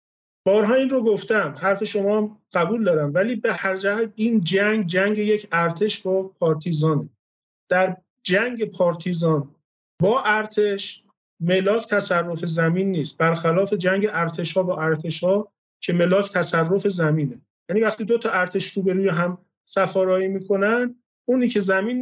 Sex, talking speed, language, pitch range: male, 140 wpm, Persian, 180-215 Hz